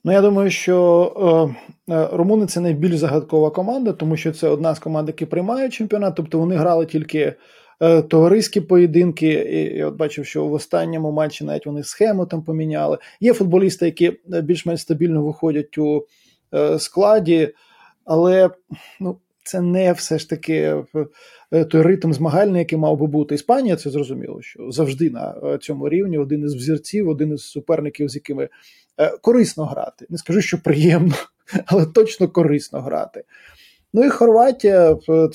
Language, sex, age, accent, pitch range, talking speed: Ukrainian, male, 20-39, native, 150-175 Hz, 160 wpm